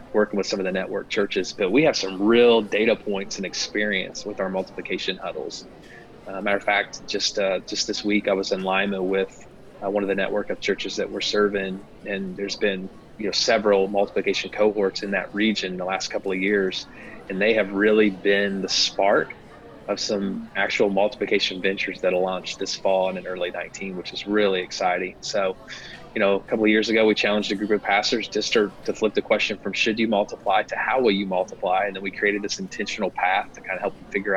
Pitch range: 95-105 Hz